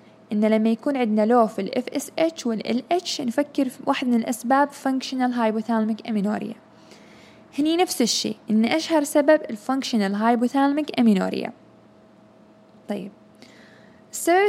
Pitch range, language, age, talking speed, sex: 215-270 Hz, Arabic, 10-29, 115 wpm, female